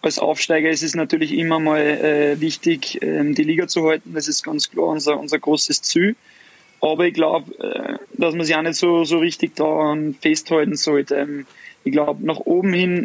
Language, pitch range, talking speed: German, 150-175 Hz, 200 wpm